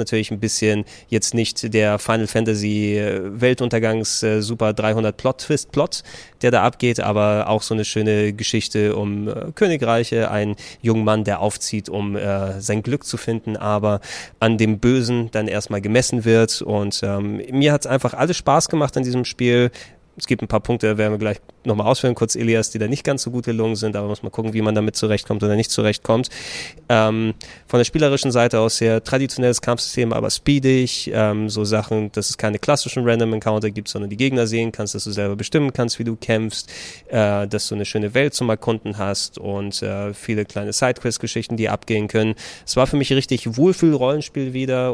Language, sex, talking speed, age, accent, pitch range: German, male, 195 wpm, 20-39, German, 105-125 Hz